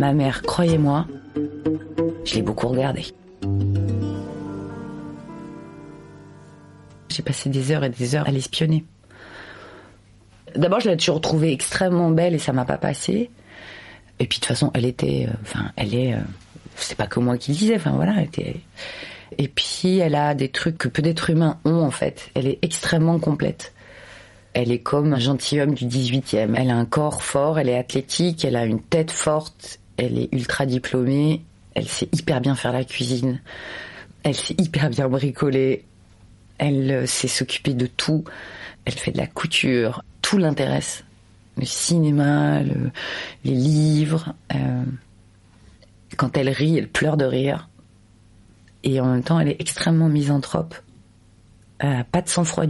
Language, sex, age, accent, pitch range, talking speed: French, female, 30-49, French, 125-155 Hz, 160 wpm